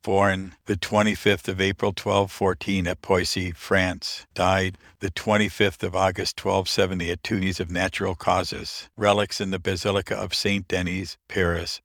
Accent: American